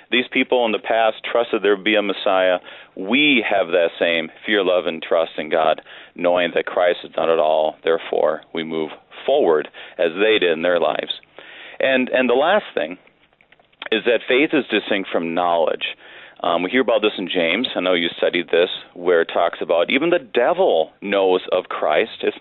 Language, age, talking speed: English, 40-59, 195 wpm